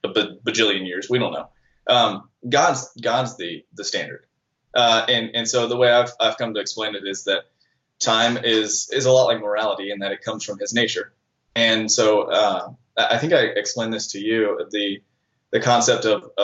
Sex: male